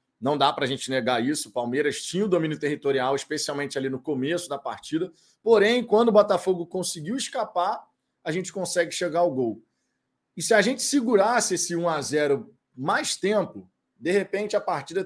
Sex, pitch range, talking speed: male, 150-205 Hz, 175 wpm